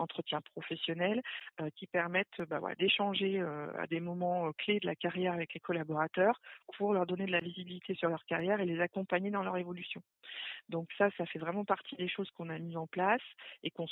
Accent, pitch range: French, 165-195 Hz